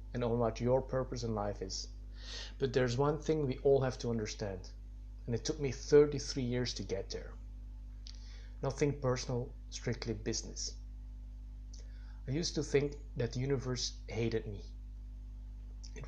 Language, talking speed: English, 150 wpm